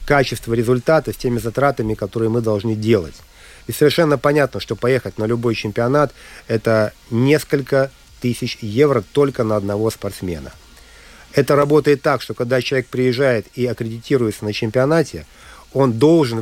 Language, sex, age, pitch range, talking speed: Russian, male, 50-69, 115-145 Hz, 140 wpm